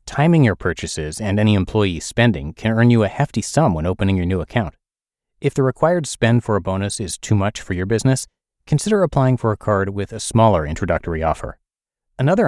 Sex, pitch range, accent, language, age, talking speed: male, 90-115 Hz, American, English, 30-49, 200 wpm